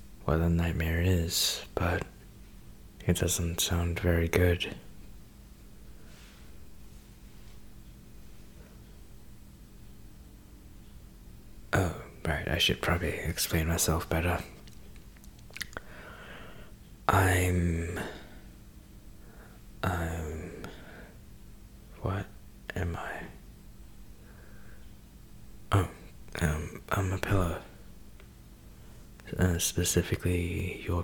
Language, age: English, 20-39